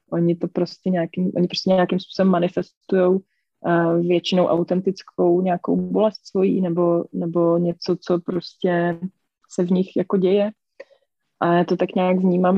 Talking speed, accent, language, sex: 150 wpm, native, Czech, female